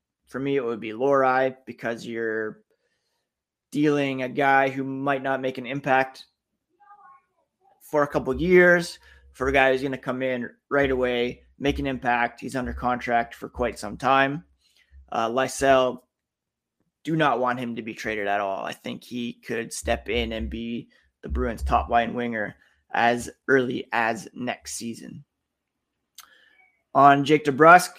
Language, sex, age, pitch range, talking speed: English, male, 20-39, 125-150 Hz, 160 wpm